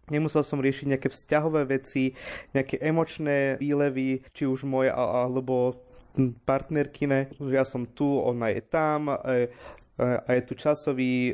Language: Slovak